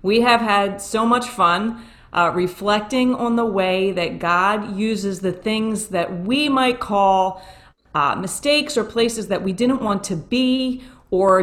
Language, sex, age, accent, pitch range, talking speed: English, female, 30-49, American, 180-230 Hz, 165 wpm